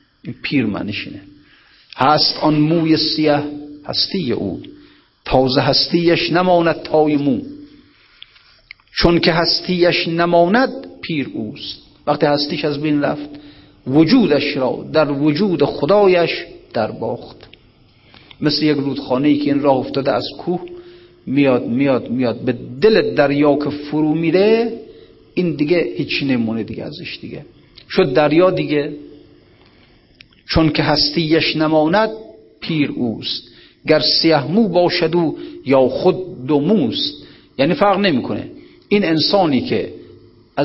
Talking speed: 115 wpm